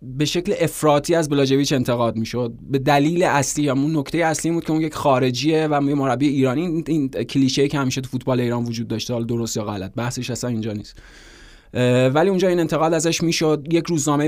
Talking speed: 215 wpm